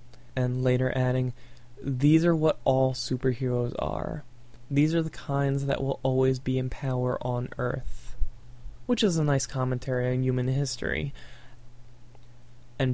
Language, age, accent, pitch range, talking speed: English, 20-39, American, 120-135 Hz, 140 wpm